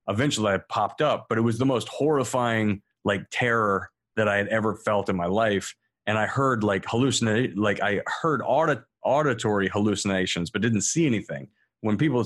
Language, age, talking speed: English, 30-49, 180 wpm